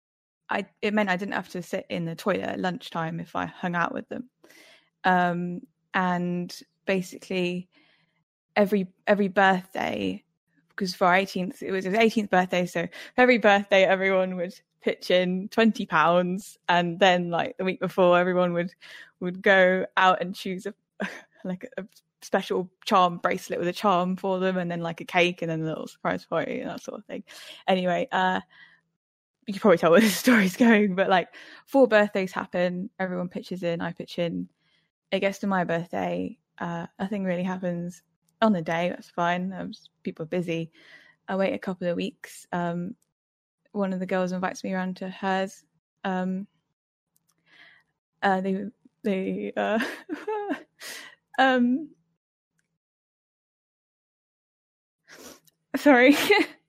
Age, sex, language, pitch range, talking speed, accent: 10-29, female, English, 175-210 Hz, 155 wpm, British